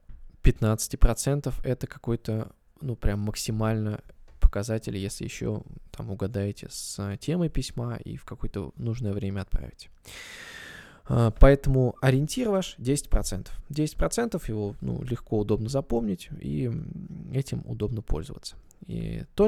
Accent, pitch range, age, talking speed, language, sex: native, 110-145 Hz, 20-39, 115 wpm, Russian, male